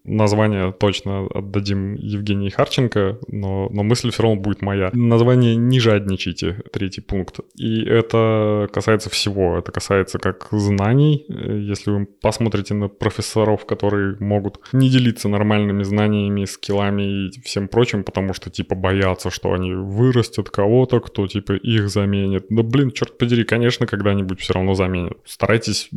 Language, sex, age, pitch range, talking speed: Russian, male, 20-39, 100-115 Hz, 145 wpm